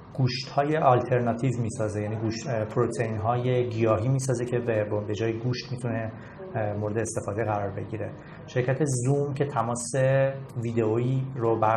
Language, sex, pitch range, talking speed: Persian, male, 115-130 Hz, 140 wpm